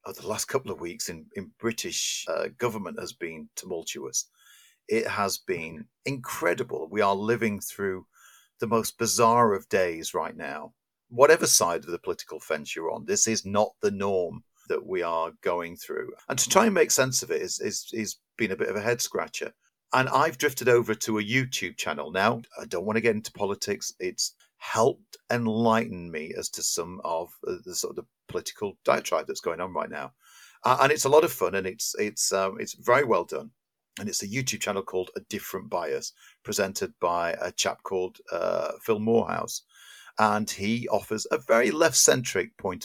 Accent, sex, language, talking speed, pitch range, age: British, male, English, 195 wpm, 105-150 Hz, 50-69